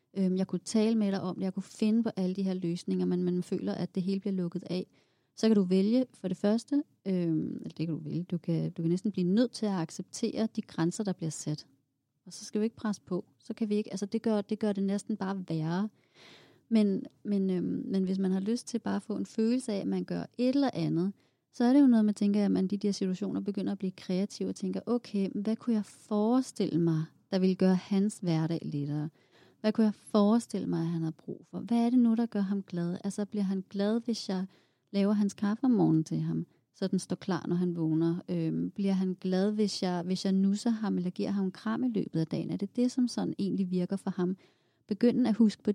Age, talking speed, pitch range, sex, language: 30-49, 255 wpm, 180-215 Hz, female, Danish